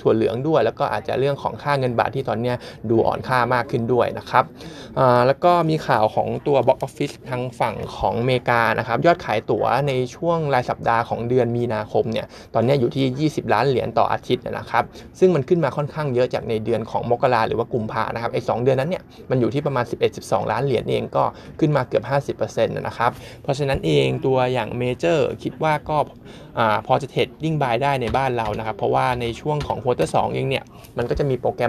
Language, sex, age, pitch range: Thai, male, 20-39, 115-140 Hz